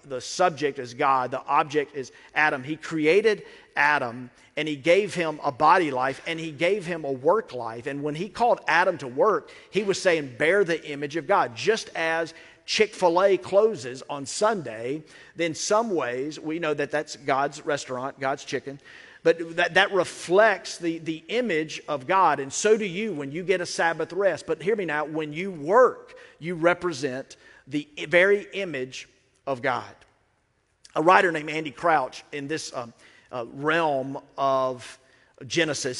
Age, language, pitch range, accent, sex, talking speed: 40-59, English, 140-185 Hz, American, male, 175 wpm